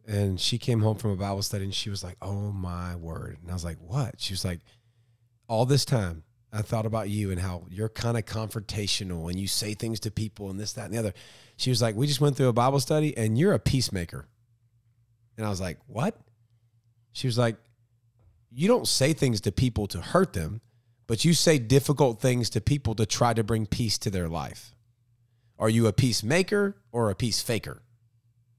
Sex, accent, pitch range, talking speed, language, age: male, American, 110-135 Hz, 215 wpm, English, 30-49